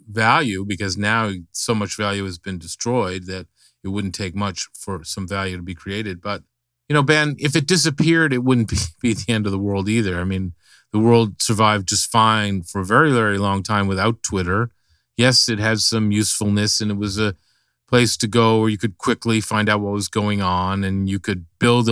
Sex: male